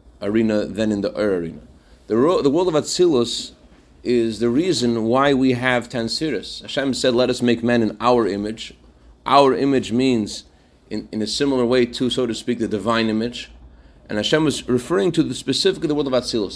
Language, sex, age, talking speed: English, male, 30-49, 205 wpm